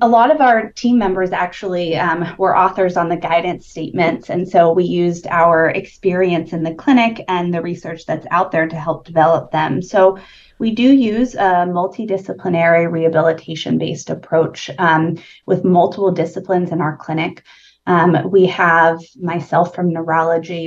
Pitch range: 165-190 Hz